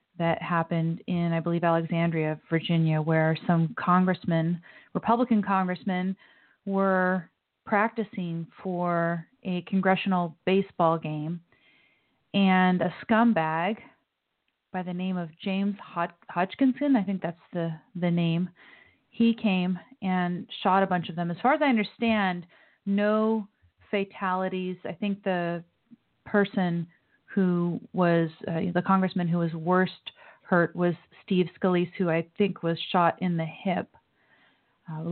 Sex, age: female, 30-49